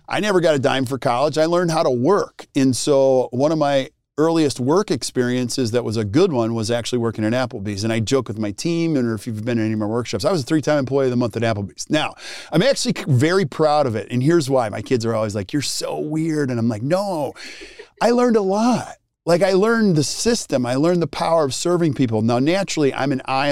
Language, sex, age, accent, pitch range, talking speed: English, male, 40-59, American, 115-150 Hz, 250 wpm